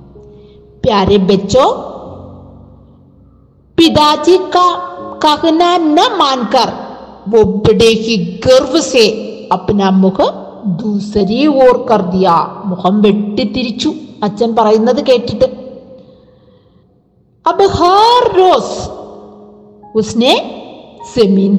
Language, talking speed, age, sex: Malayalam, 65 wpm, 50-69, female